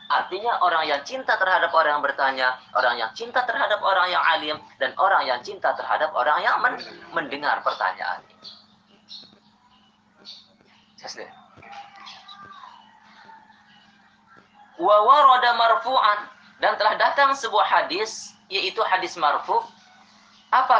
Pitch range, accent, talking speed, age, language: 205-305 Hz, native, 105 wpm, 30-49, Indonesian